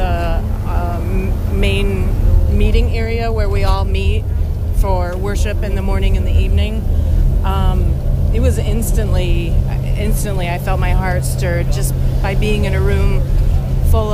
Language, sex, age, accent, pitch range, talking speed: English, female, 30-49, American, 70-90 Hz, 140 wpm